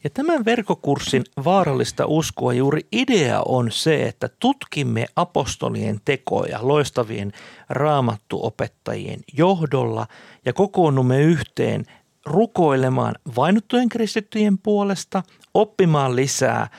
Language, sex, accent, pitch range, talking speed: Finnish, male, native, 120-180 Hz, 90 wpm